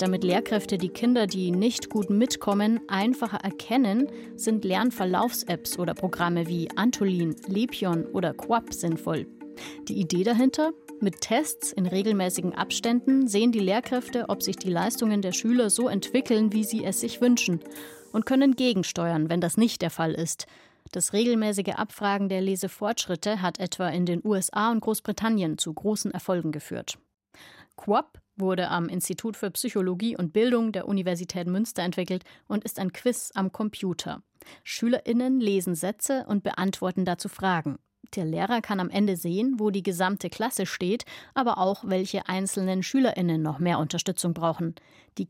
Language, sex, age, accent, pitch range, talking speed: German, female, 30-49, German, 180-225 Hz, 150 wpm